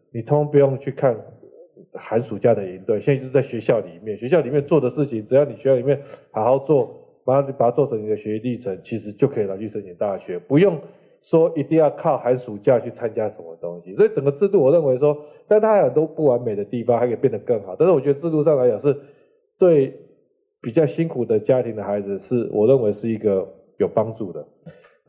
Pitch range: 110-155 Hz